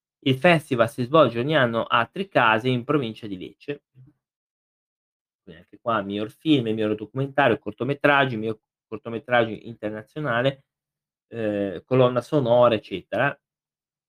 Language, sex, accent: Italian, male, native